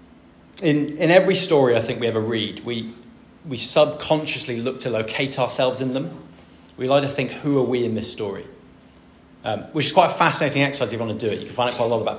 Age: 30-49